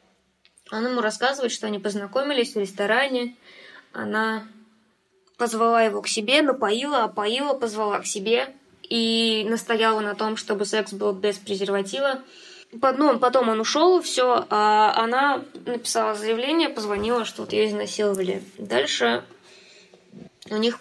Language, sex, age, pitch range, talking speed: Russian, female, 20-39, 205-245 Hz, 125 wpm